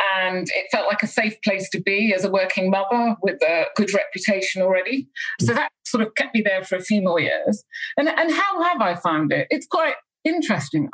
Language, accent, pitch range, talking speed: English, British, 185-245 Hz, 220 wpm